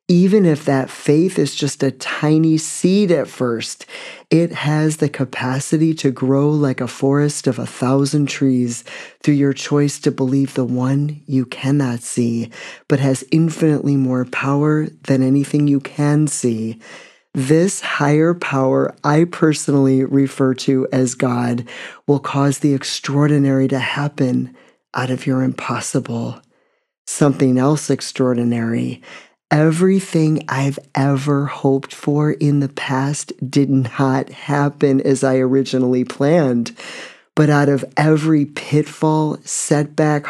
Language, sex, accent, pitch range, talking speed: English, male, American, 135-150 Hz, 130 wpm